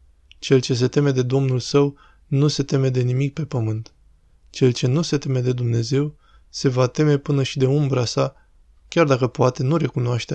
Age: 20-39